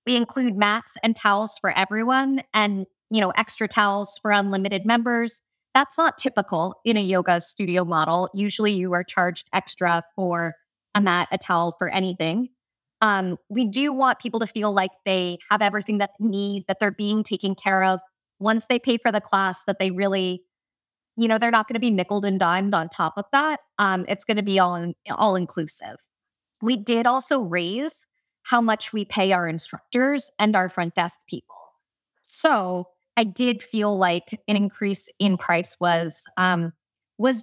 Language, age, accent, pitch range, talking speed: English, 20-39, American, 185-230 Hz, 180 wpm